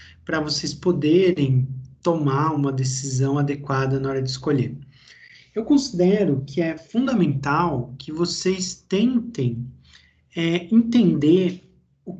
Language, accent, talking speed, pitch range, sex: Portuguese, Brazilian, 110 wpm, 140-185 Hz, male